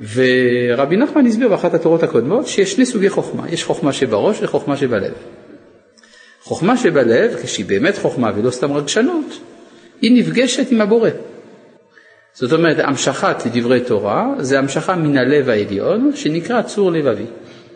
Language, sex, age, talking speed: Hebrew, male, 50-69, 135 wpm